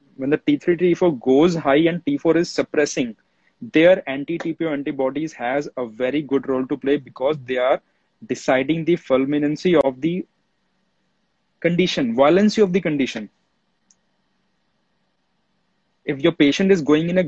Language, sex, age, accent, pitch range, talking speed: English, male, 30-49, Indian, 130-180 Hz, 140 wpm